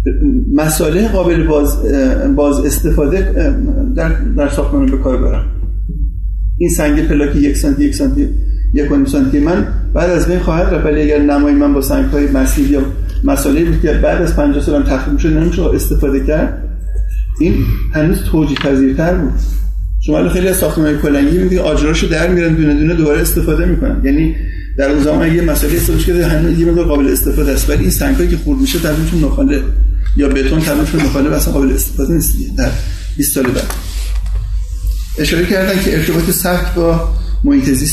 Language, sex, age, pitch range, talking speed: Persian, male, 50-69, 135-170 Hz, 150 wpm